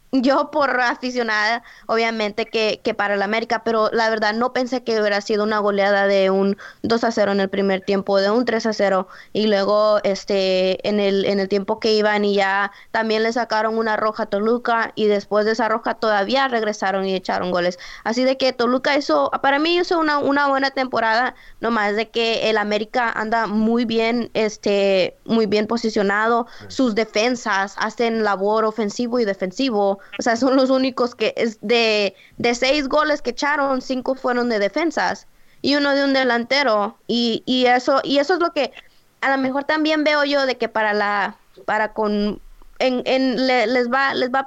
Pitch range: 210-260 Hz